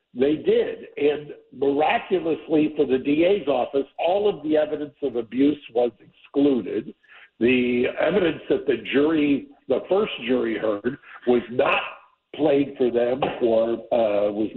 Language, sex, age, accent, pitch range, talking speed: English, male, 60-79, American, 125-155 Hz, 135 wpm